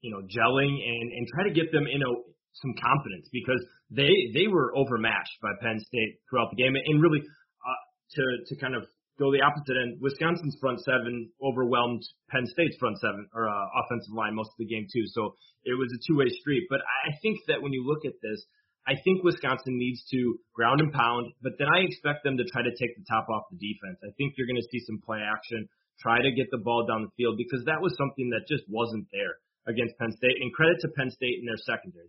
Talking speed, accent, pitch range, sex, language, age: 235 wpm, American, 115-140 Hz, male, English, 30-49